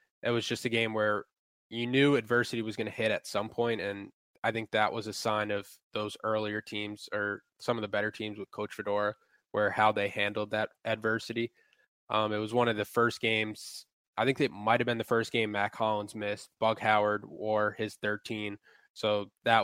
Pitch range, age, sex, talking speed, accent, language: 105-115 Hz, 20-39, male, 210 wpm, American, English